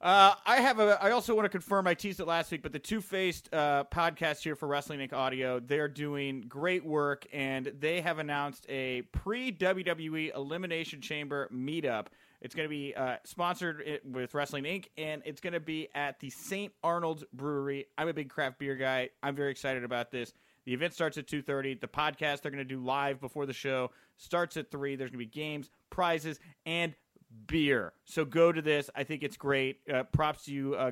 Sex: male